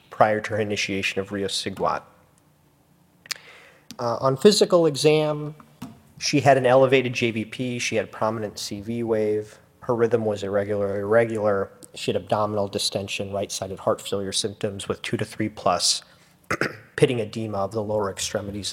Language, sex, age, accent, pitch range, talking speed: English, male, 40-59, American, 105-125 Hz, 145 wpm